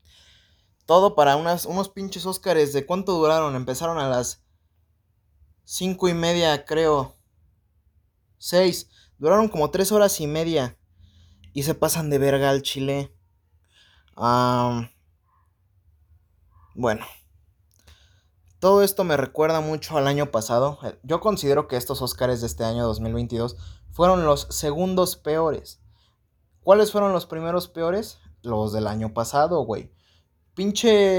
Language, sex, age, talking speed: Spanish, male, 20-39, 120 wpm